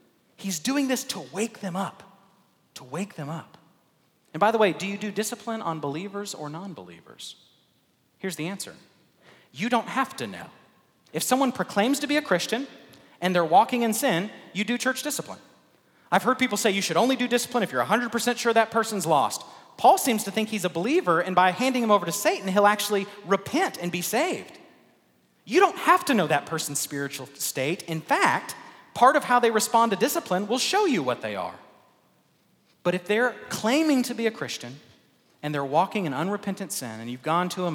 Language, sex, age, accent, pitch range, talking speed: English, male, 30-49, American, 140-225 Hz, 200 wpm